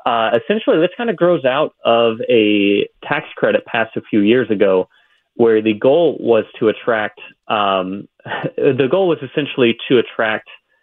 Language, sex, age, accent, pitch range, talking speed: English, male, 30-49, American, 100-140 Hz, 160 wpm